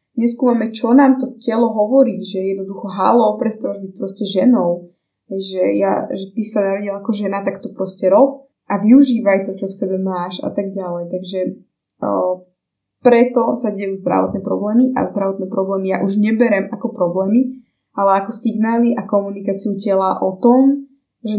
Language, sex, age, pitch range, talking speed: Slovak, female, 20-39, 190-225 Hz, 170 wpm